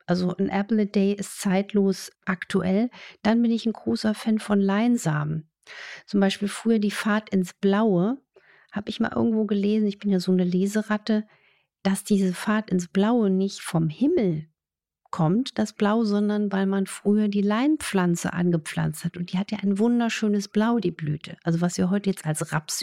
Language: German